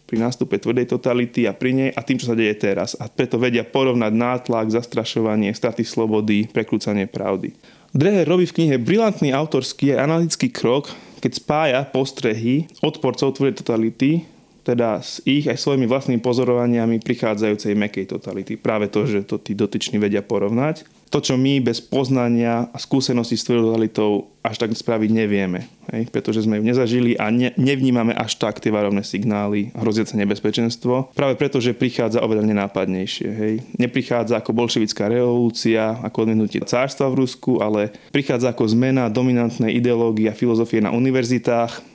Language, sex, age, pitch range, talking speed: Slovak, male, 20-39, 110-130 Hz, 155 wpm